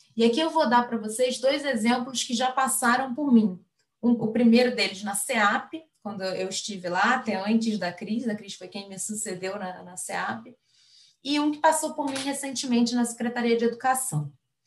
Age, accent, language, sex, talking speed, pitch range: 20-39, Brazilian, Portuguese, female, 195 wpm, 200-265 Hz